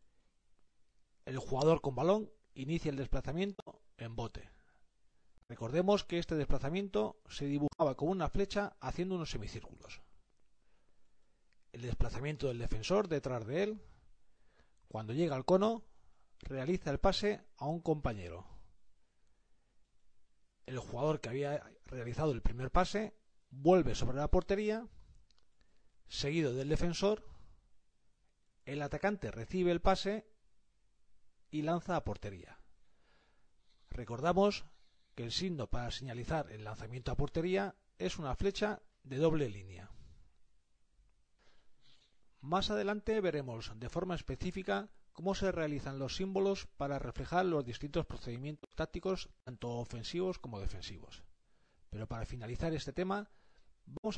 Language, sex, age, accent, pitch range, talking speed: Spanish, male, 40-59, Spanish, 115-180 Hz, 115 wpm